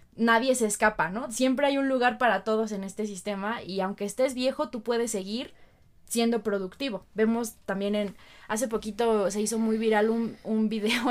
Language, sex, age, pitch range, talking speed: Spanish, female, 20-39, 205-255 Hz, 185 wpm